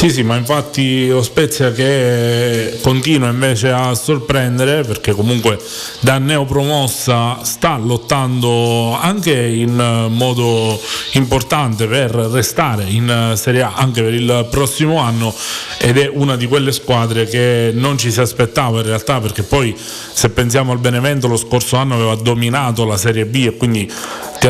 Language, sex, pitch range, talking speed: Italian, male, 115-140 Hz, 145 wpm